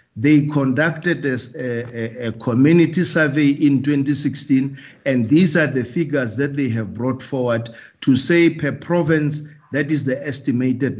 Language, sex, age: English, male, 50-69